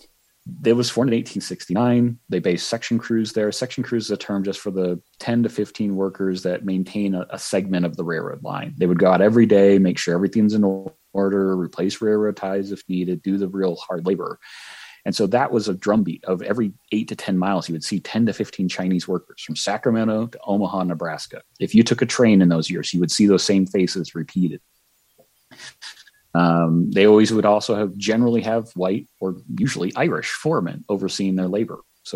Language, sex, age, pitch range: English, male, 30-49, 90-105 Hz